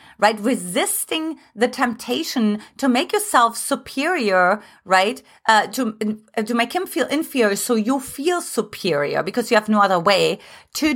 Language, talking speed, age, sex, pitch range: English, 150 wpm, 30-49, female, 215-305 Hz